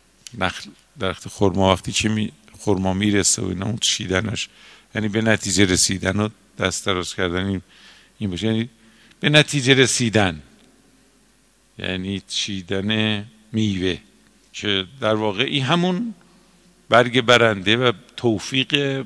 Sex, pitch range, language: male, 95-125 Hz, Persian